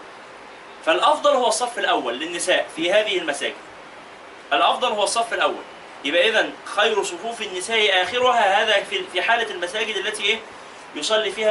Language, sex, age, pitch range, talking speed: Arabic, male, 30-49, 180-240 Hz, 135 wpm